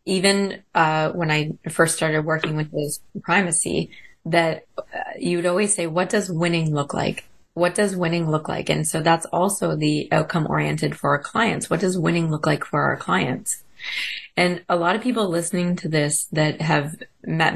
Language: English